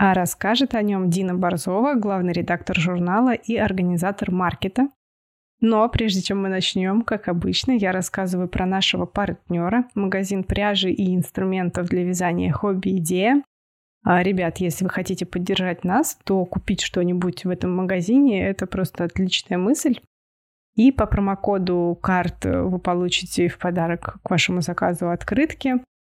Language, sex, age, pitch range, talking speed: Russian, female, 20-39, 180-210 Hz, 135 wpm